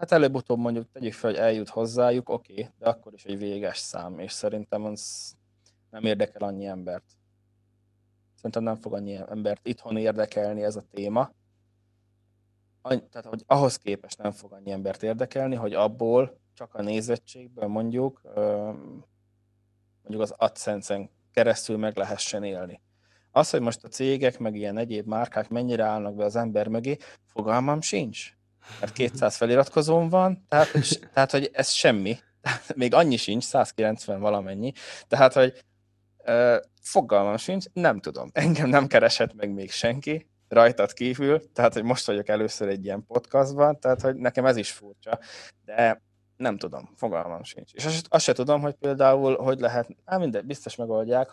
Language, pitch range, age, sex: Hungarian, 100-125 Hz, 20-39, male